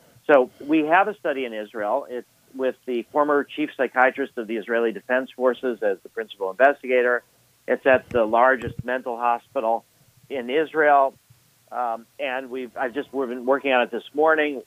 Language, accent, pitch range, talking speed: English, American, 125-150 Hz, 170 wpm